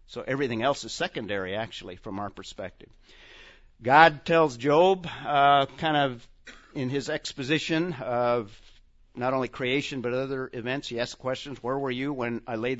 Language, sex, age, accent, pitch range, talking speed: English, male, 50-69, American, 120-145 Hz, 160 wpm